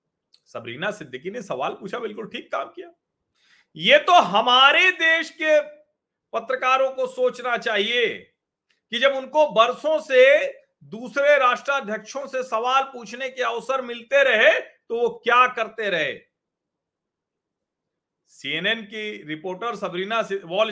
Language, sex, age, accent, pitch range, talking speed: Hindi, male, 40-59, native, 220-280 Hz, 120 wpm